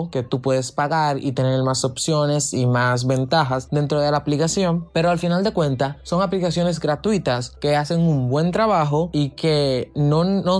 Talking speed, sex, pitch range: 180 wpm, male, 135-195 Hz